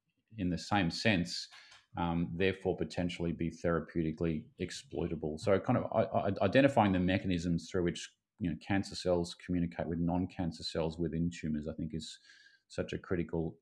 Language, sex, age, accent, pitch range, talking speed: English, male, 30-49, Australian, 80-90 Hz, 150 wpm